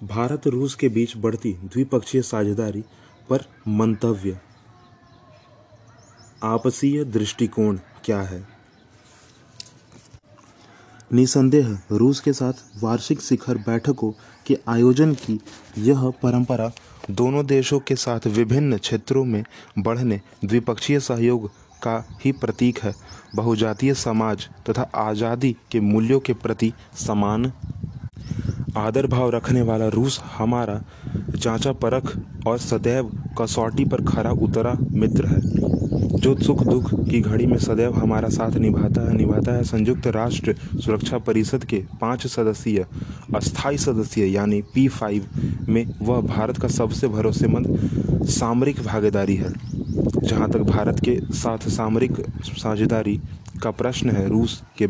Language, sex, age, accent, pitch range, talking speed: Hindi, male, 30-49, native, 110-125 Hz, 120 wpm